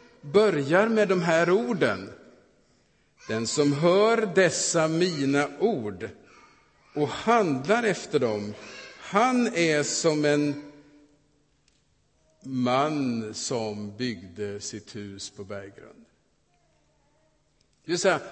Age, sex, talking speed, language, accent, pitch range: 50-69, male, 85 wpm, Swedish, Norwegian, 145-210 Hz